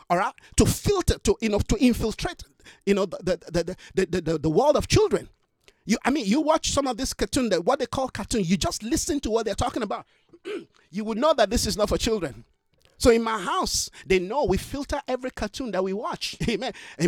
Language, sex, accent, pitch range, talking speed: English, male, Nigerian, 185-255 Hz, 230 wpm